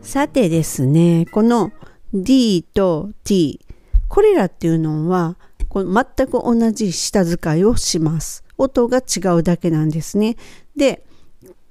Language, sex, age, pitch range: Japanese, female, 50-69, 160-210 Hz